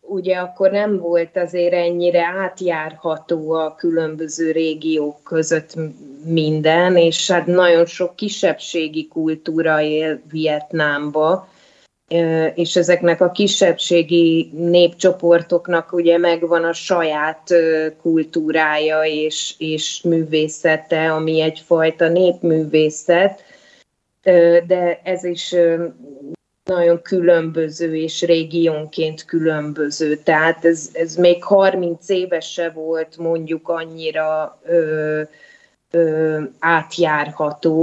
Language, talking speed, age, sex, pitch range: Hungarian, 85 wpm, 30-49, female, 155-175 Hz